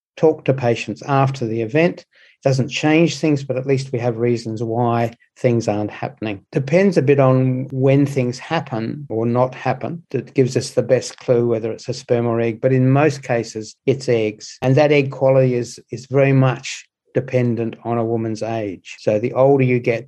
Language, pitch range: English, 115-135 Hz